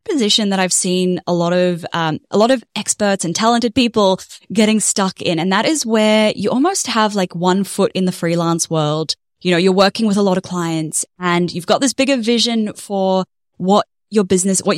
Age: 10-29